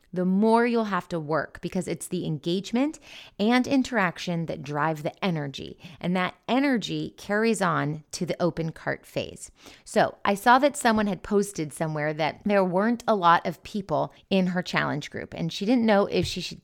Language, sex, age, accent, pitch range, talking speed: English, female, 30-49, American, 170-215 Hz, 190 wpm